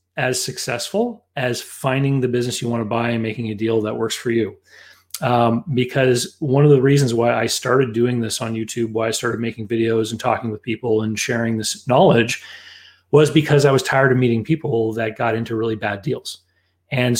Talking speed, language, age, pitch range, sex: 205 wpm, English, 30-49, 110-130 Hz, male